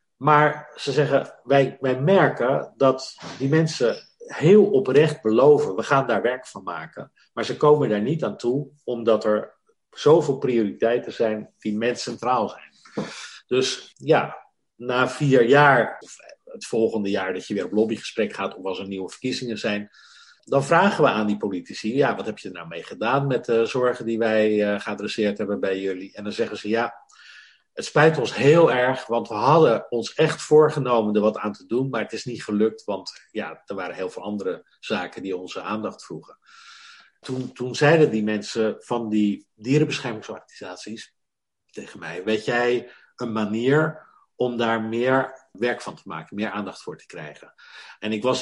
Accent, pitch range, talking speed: Dutch, 110-130 Hz, 175 wpm